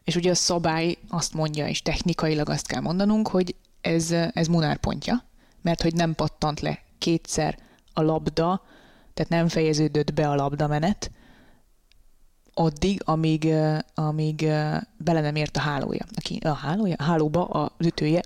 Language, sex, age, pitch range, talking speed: Hungarian, female, 20-39, 160-185 Hz, 130 wpm